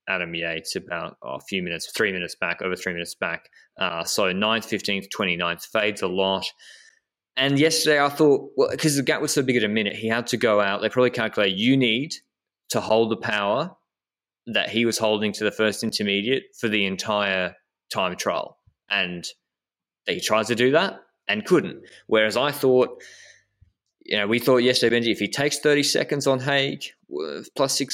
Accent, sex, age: Australian, male, 20-39